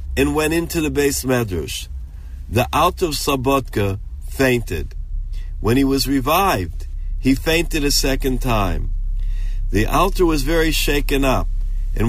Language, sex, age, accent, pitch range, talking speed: English, male, 50-69, American, 95-140 Hz, 135 wpm